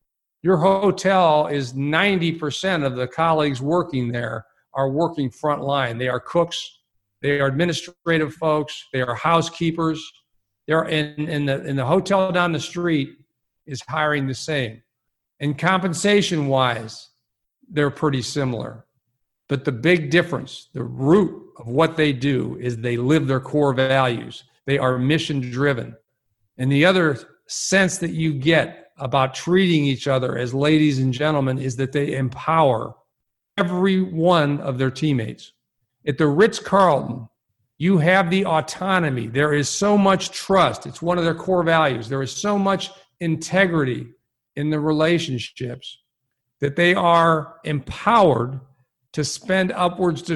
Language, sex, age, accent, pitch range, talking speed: English, male, 50-69, American, 130-170 Hz, 145 wpm